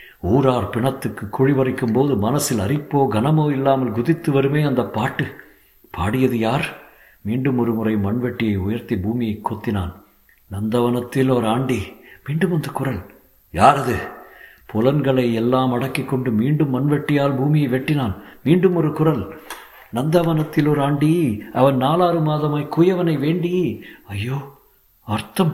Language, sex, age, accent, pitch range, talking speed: Tamil, male, 50-69, native, 115-160 Hz, 115 wpm